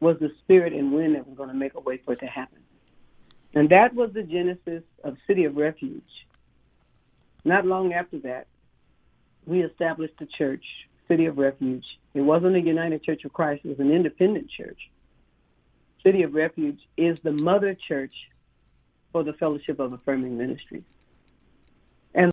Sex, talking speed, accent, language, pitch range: female, 165 wpm, American, English, 140-170 Hz